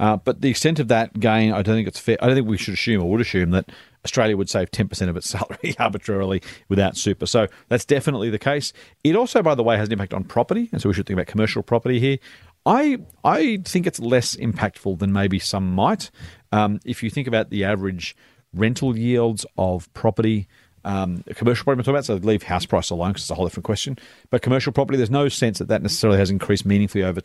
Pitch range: 95-115 Hz